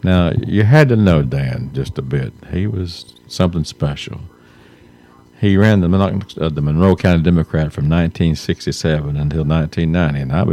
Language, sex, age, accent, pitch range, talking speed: English, male, 50-69, American, 75-100 Hz, 150 wpm